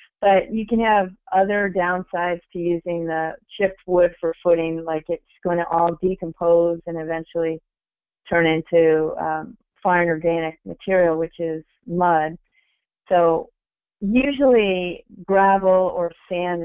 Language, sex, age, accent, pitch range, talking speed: English, female, 30-49, American, 170-200 Hz, 125 wpm